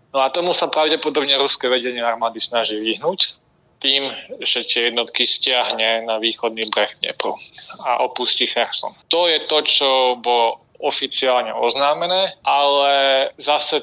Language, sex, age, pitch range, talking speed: Slovak, male, 20-39, 120-150 Hz, 130 wpm